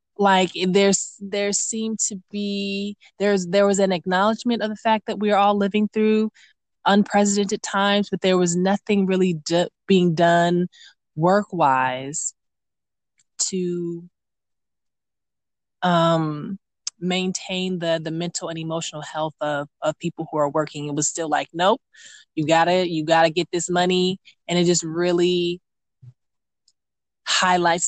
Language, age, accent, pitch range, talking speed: English, 20-39, American, 155-185 Hz, 140 wpm